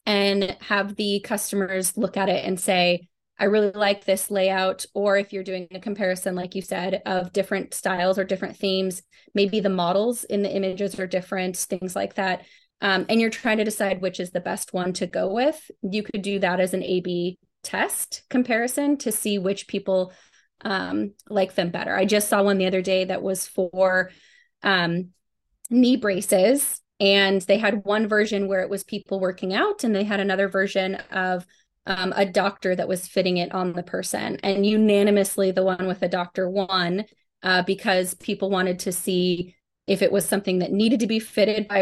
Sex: female